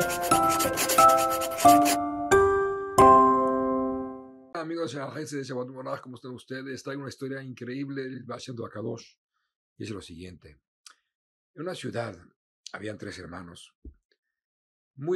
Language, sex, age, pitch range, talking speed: Spanish, male, 50-69, 105-135 Hz, 115 wpm